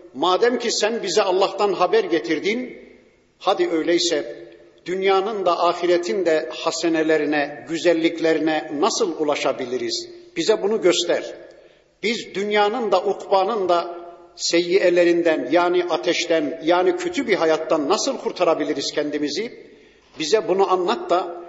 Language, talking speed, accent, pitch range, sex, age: Turkish, 110 wpm, native, 165-225 Hz, male, 50-69